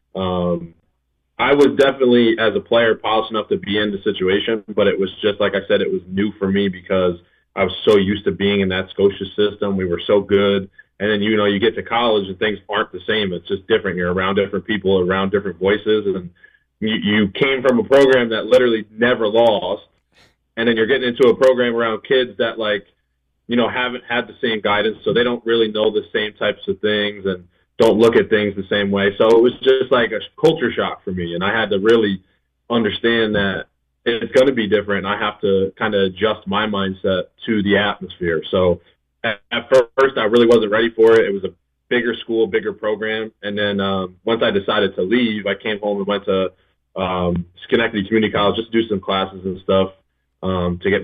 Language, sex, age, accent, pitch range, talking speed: English, male, 30-49, American, 95-115 Hz, 220 wpm